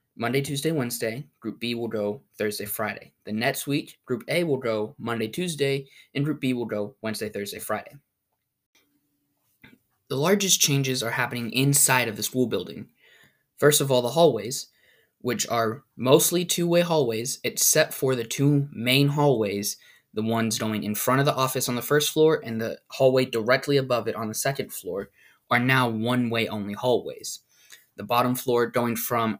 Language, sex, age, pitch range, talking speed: English, male, 20-39, 115-140 Hz, 170 wpm